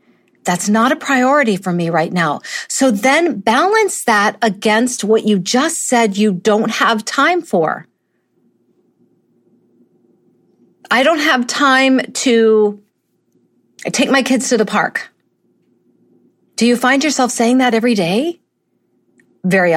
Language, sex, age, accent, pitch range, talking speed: English, female, 50-69, American, 210-285 Hz, 125 wpm